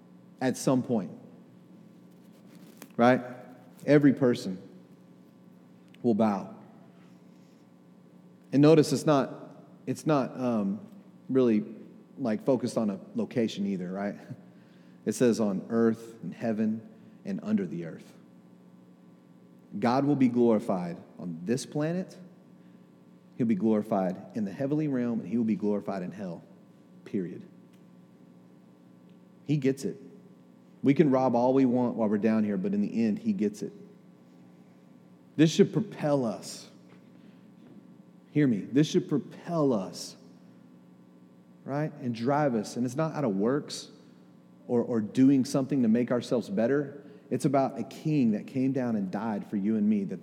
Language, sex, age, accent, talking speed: English, male, 40-59, American, 140 wpm